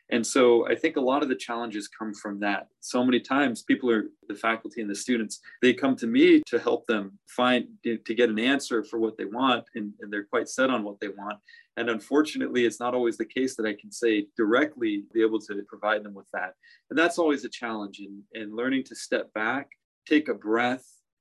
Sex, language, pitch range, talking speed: male, English, 110-135 Hz, 225 wpm